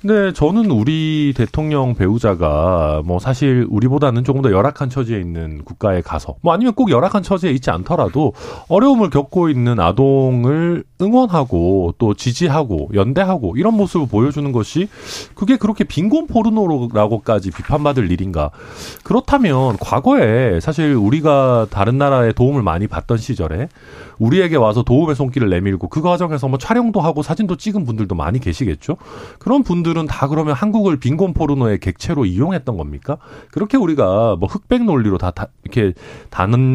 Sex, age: male, 40-59